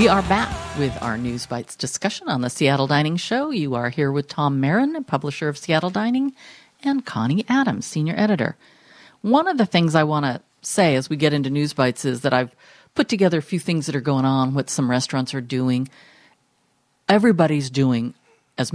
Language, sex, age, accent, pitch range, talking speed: English, female, 50-69, American, 130-170 Hz, 200 wpm